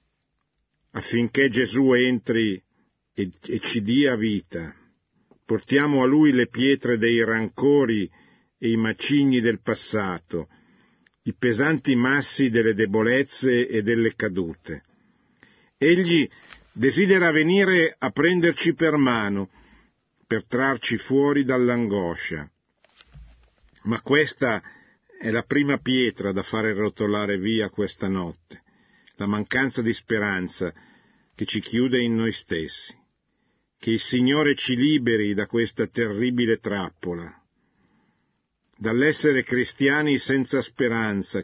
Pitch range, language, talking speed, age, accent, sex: 105-135 Hz, Italian, 105 wpm, 50-69, native, male